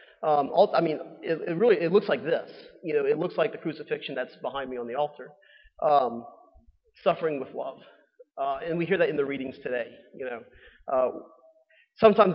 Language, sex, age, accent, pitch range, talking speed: English, male, 40-59, American, 155-250 Hz, 195 wpm